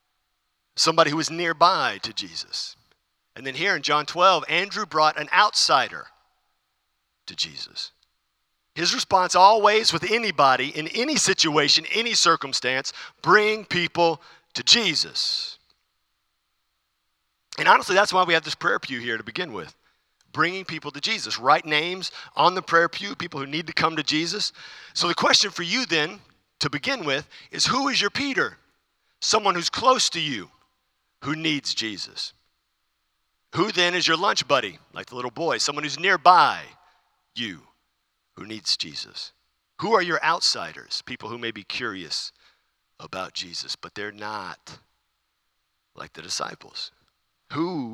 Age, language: 50-69, English